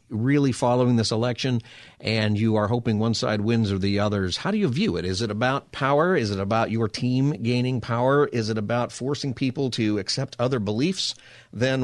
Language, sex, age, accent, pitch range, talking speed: English, male, 50-69, American, 100-125 Hz, 205 wpm